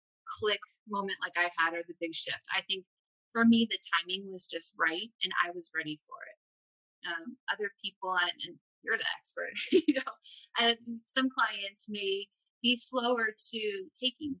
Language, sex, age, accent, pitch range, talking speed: English, female, 30-49, American, 175-230 Hz, 175 wpm